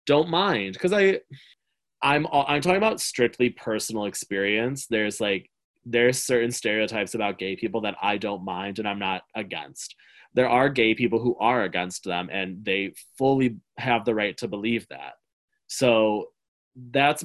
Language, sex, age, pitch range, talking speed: English, male, 20-39, 115-160 Hz, 155 wpm